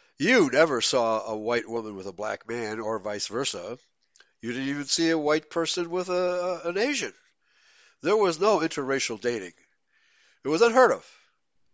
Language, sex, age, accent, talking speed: English, male, 60-79, American, 165 wpm